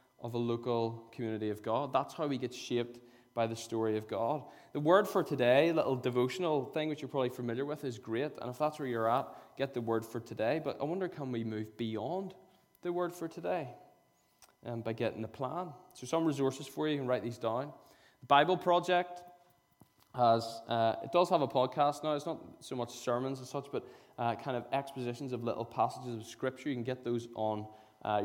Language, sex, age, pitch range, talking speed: English, male, 10-29, 120-150 Hz, 215 wpm